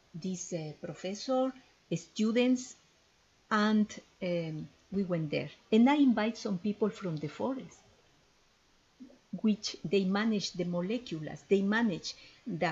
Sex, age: female, 50-69